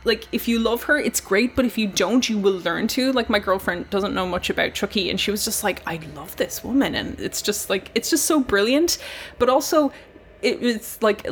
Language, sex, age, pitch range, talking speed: English, female, 20-39, 195-245 Hz, 235 wpm